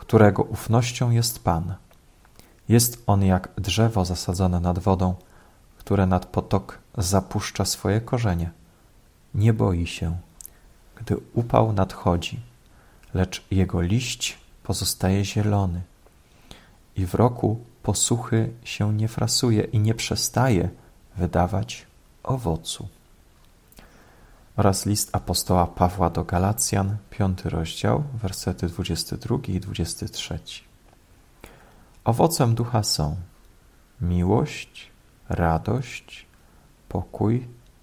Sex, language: male, Polish